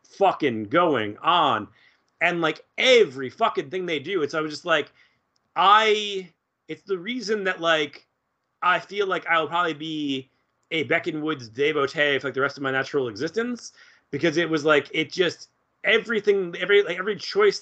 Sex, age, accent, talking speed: male, 30-49, American, 170 wpm